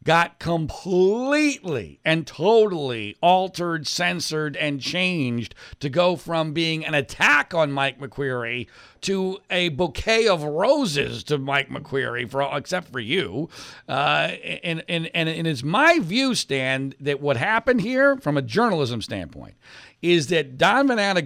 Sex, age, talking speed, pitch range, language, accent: male, 50-69, 135 wpm, 130-175 Hz, English, American